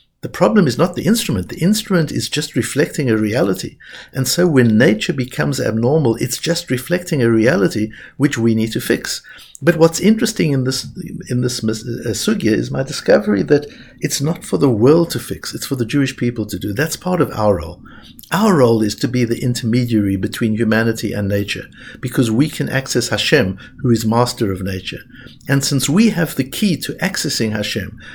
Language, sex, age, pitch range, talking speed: English, male, 60-79, 110-145 Hz, 190 wpm